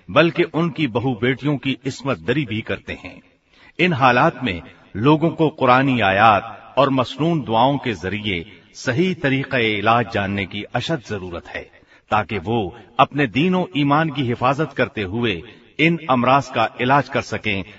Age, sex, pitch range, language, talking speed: 50-69, male, 110-150 Hz, Hindi, 120 wpm